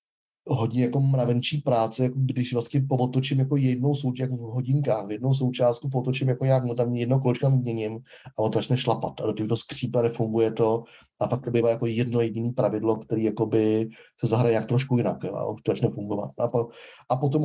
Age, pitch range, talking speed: 30-49, 115-130 Hz, 180 wpm